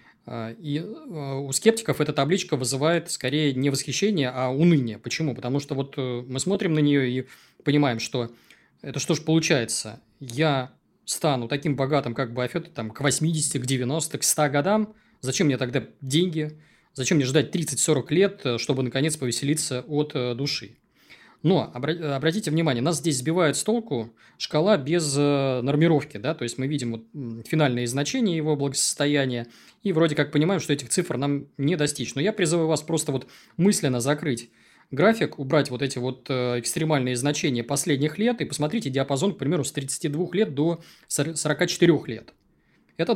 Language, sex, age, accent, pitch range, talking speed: Russian, male, 20-39, native, 130-165 Hz, 160 wpm